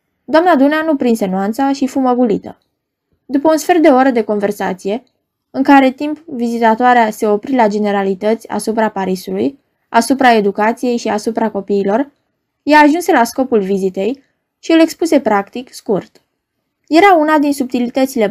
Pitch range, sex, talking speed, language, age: 215-285 Hz, female, 140 wpm, Romanian, 20-39